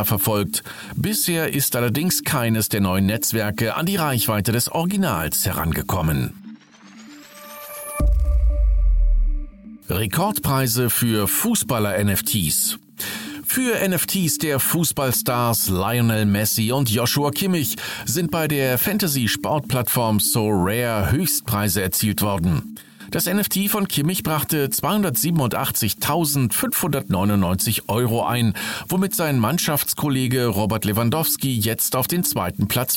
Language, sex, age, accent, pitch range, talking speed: German, male, 50-69, German, 105-155 Hz, 95 wpm